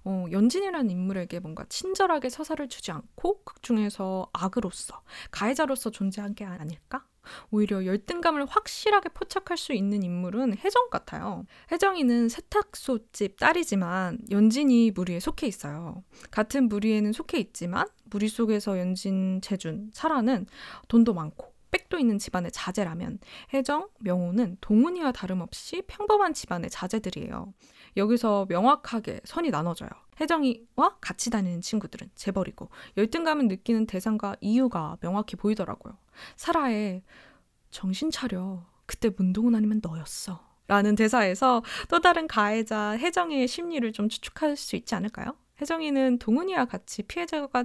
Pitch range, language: 195-285 Hz, Korean